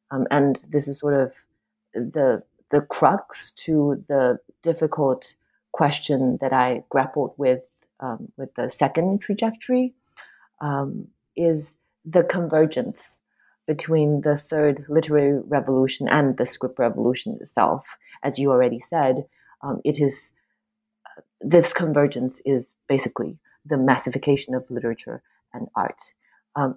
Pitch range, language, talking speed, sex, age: 140-165 Hz, English, 125 wpm, female, 30-49